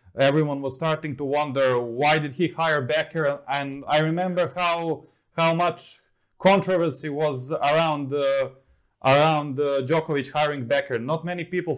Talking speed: 145 wpm